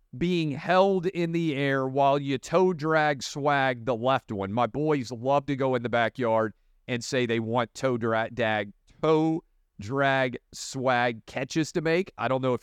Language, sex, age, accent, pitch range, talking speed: English, male, 40-59, American, 110-145 Hz, 180 wpm